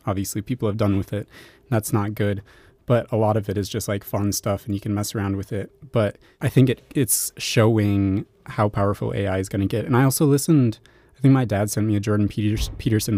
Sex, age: male, 20-39